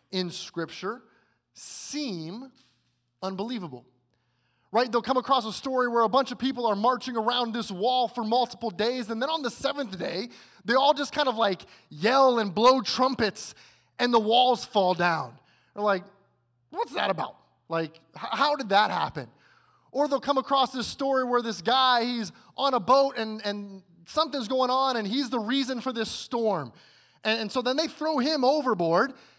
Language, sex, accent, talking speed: English, male, American, 180 wpm